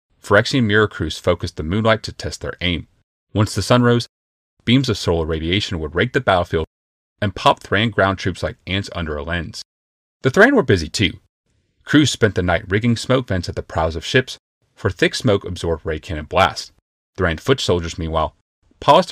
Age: 30-49